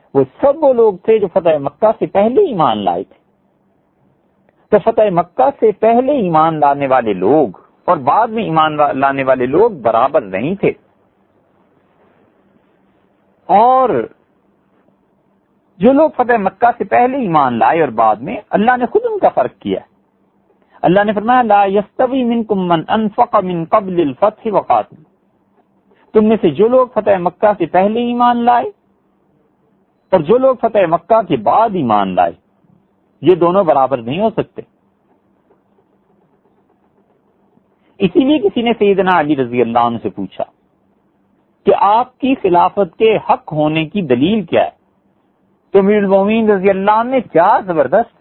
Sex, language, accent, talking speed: male, English, Indian, 135 wpm